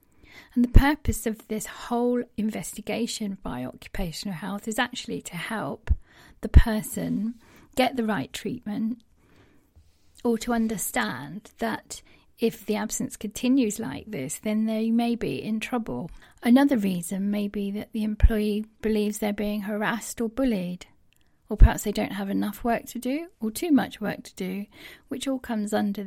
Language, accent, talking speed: English, British, 155 wpm